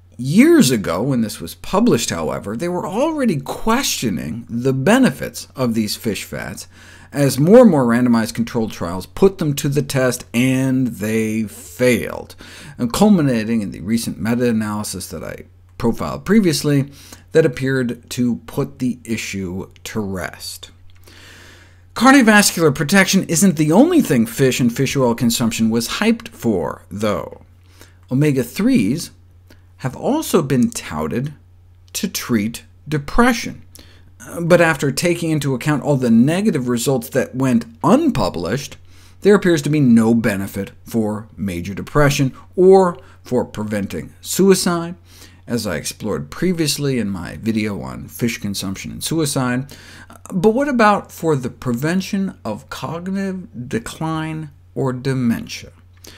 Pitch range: 95-160 Hz